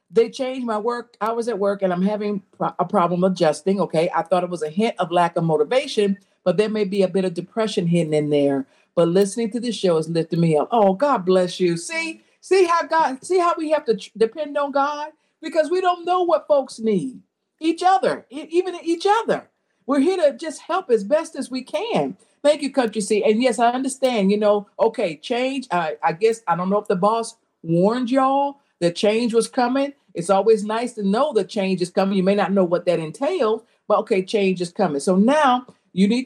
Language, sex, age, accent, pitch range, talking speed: English, female, 50-69, American, 180-255 Hz, 225 wpm